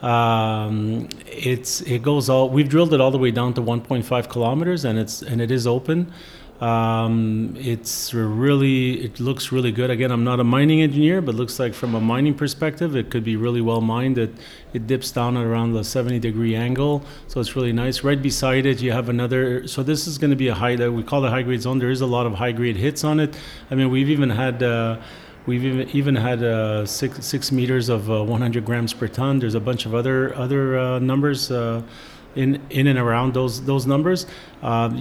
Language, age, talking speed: English, 30-49, 225 wpm